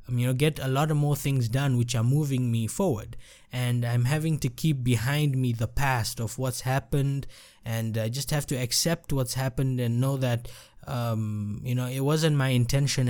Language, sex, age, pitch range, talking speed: English, male, 20-39, 120-150 Hz, 200 wpm